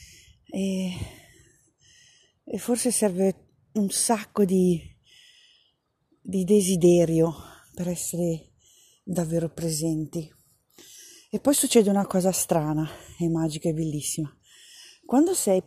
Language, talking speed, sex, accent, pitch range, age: Italian, 90 wpm, female, native, 165-210 Hz, 40-59